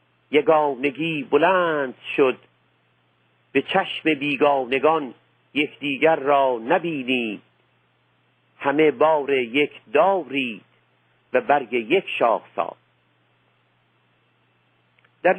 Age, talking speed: 50-69, 70 wpm